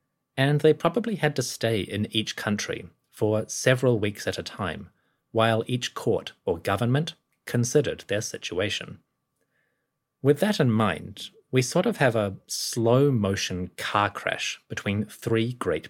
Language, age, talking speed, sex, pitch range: English, 30-49, 145 wpm, male, 105-130 Hz